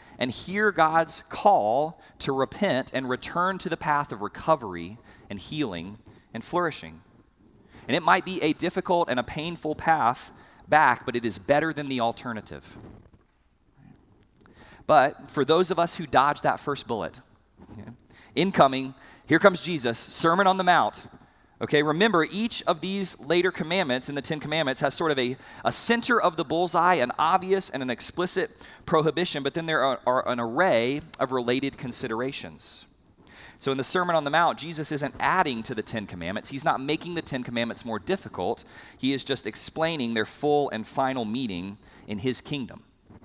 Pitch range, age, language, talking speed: 120-170 Hz, 30-49, English, 170 wpm